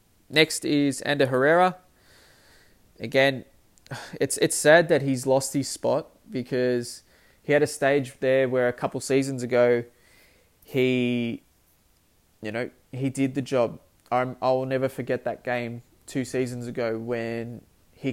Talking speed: 140 wpm